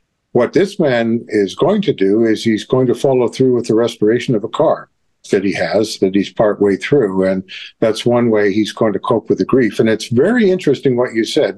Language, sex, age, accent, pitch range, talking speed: English, male, 50-69, American, 110-135 Hz, 235 wpm